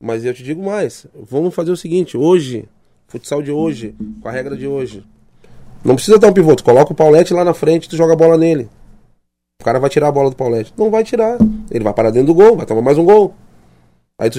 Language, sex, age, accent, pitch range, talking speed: Portuguese, male, 20-39, Brazilian, 125-185 Hz, 245 wpm